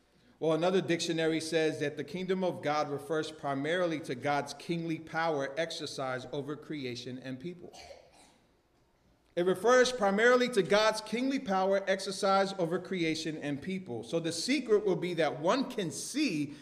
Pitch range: 160-230 Hz